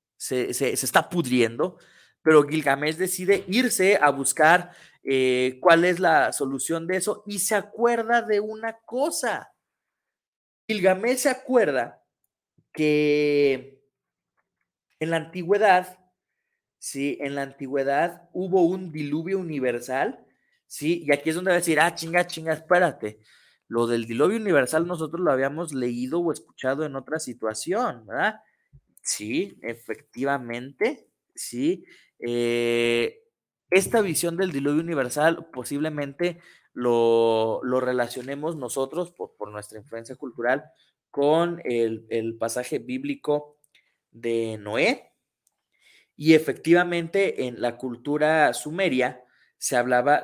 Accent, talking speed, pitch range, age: Mexican, 120 wpm, 125-175 Hz, 30-49